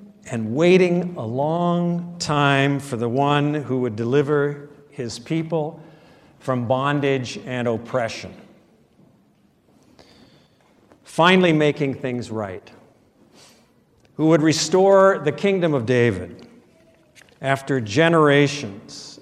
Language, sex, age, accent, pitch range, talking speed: English, male, 50-69, American, 115-165 Hz, 95 wpm